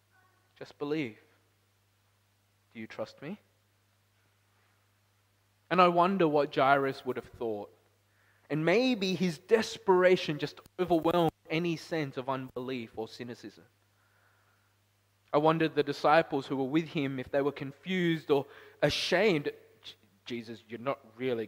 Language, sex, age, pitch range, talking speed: English, male, 20-39, 105-150 Hz, 125 wpm